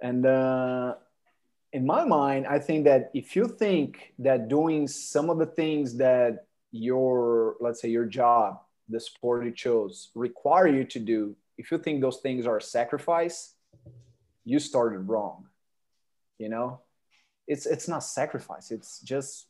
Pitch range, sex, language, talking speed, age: 120-145 Hz, male, English, 155 wpm, 30-49